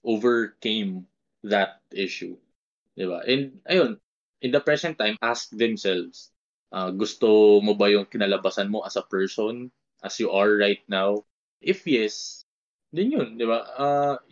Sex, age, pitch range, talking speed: male, 20-39, 100-125 Hz, 140 wpm